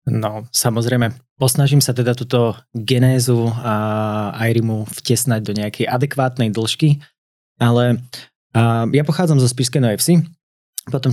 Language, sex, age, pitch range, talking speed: Slovak, male, 20-39, 110-125 Hz, 120 wpm